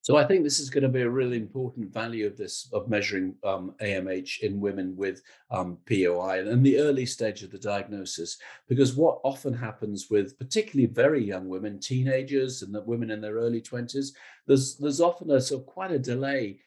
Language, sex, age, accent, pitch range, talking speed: English, male, 50-69, British, 105-130 Hz, 200 wpm